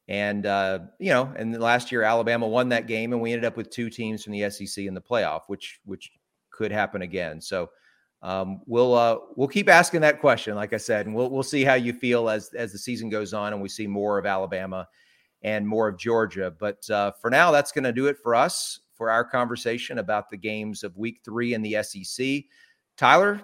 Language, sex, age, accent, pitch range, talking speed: English, male, 30-49, American, 110-135 Hz, 225 wpm